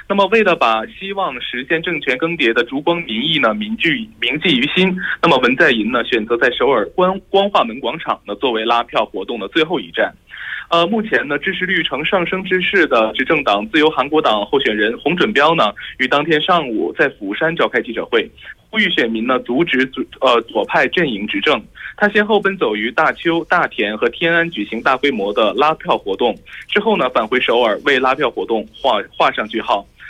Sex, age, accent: male, 20-39, Chinese